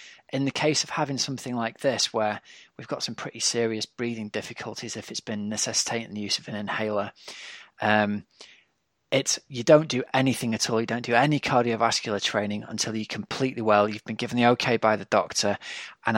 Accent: British